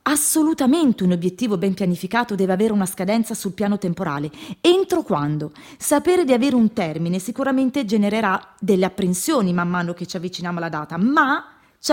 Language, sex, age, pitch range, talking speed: Italian, female, 30-49, 175-245 Hz, 160 wpm